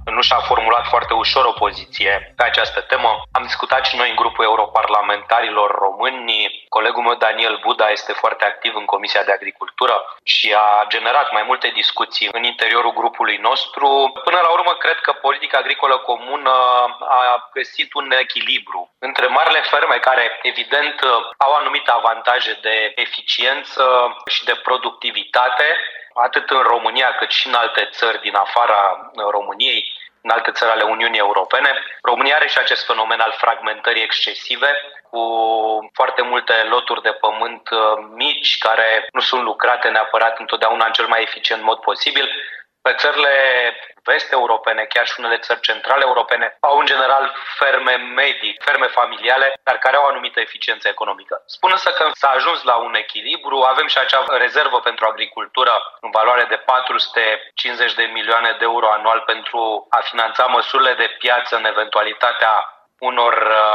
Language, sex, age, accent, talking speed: Romanian, male, 30-49, native, 155 wpm